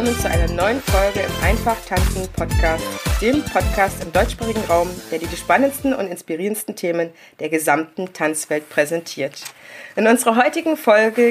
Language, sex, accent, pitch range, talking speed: German, female, German, 175-235 Hz, 150 wpm